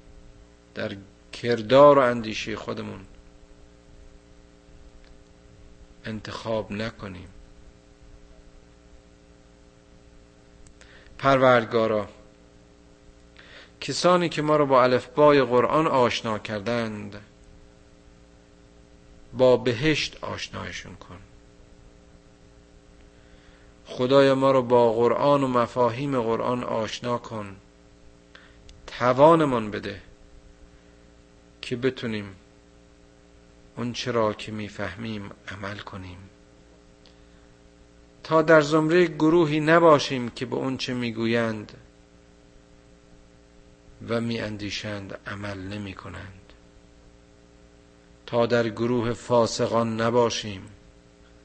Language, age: Persian, 50-69